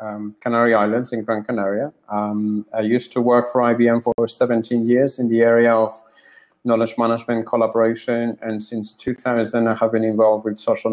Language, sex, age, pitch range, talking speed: English, male, 30-49, 110-120 Hz, 175 wpm